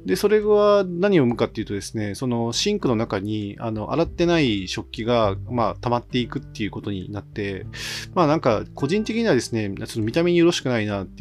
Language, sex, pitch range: Japanese, male, 105-150 Hz